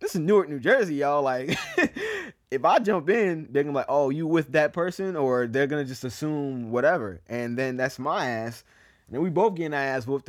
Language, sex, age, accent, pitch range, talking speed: English, male, 20-39, American, 105-140 Hz, 240 wpm